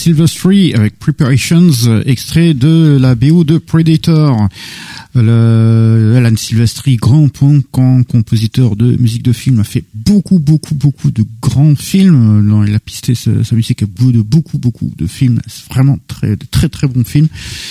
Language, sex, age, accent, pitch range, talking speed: French, male, 50-69, French, 115-155 Hz, 160 wpm